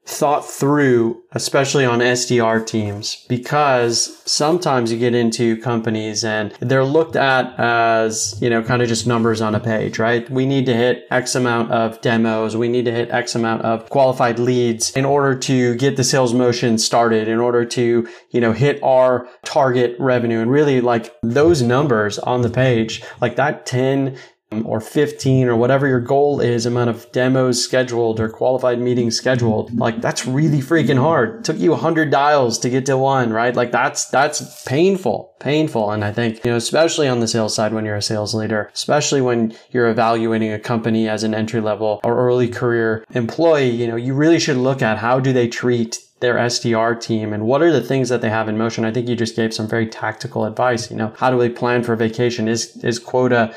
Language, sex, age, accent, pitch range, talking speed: English, male, 30-49, American, 115-130 Hz, 205 wpm